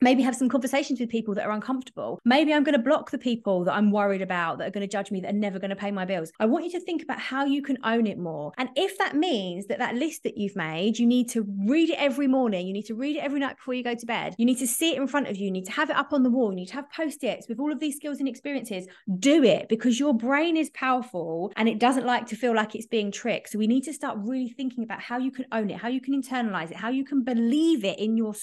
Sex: female